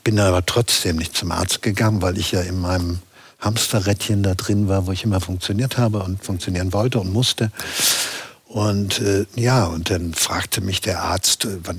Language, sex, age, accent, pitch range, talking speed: German, male, 60-79, German, 95-115 Hz, 185 wpm